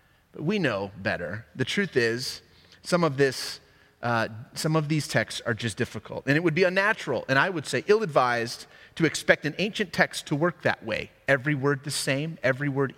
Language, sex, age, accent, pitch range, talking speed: English, male, 30-49, American, 120-160 Hz, 195 wpm